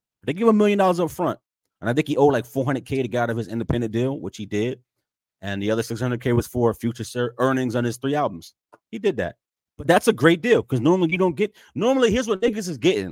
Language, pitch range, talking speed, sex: English, 110-145 Hz, 245 wpm, male